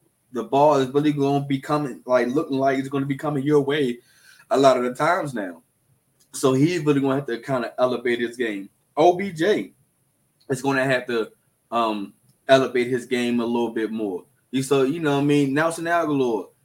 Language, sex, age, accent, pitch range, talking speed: English, male, 20-39, American, 110-145 Hz, 210 wpm